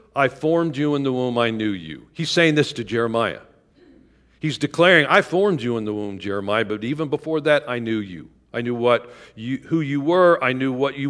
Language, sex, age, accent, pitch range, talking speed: English, male, 50-69, American, 115-155 Hz, 220 wpm